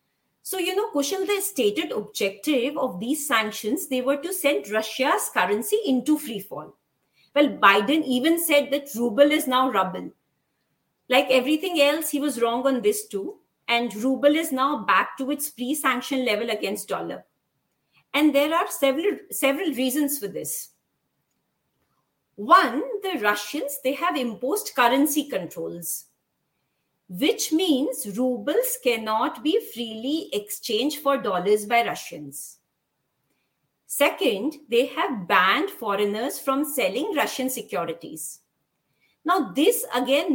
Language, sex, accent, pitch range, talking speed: English, female, Indian, 235-315 Hz, 130 wpm